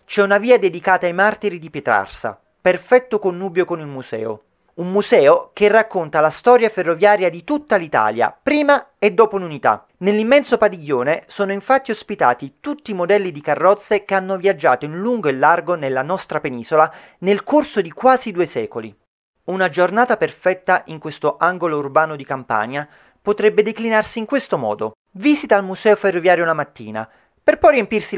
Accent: native